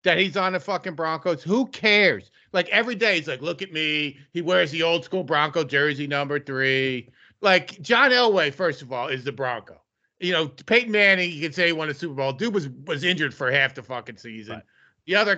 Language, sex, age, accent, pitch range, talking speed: English, male, 40-59, American, 145-200 Hz, 220 wpm